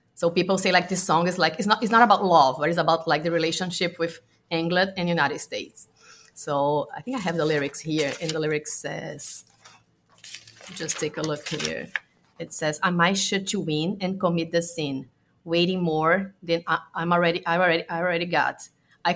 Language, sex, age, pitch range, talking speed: English, female, 30-49, 165-195 Hz, 210 wpm